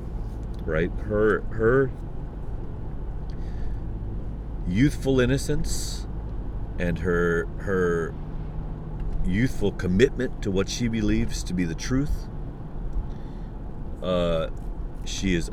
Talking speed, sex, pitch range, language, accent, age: 80 wpm, male, 85-105 Hz, English, American, 40-59